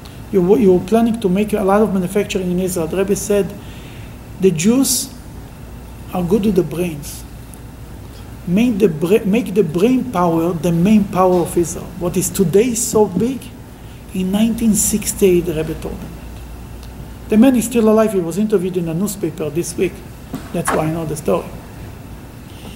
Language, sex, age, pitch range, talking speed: English, male, 50-69, 180-220 Hz, 165 wpm